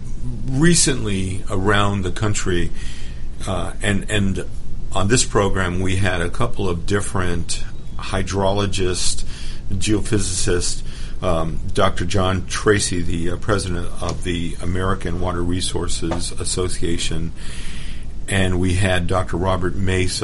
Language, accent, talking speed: English, American, 110 wpm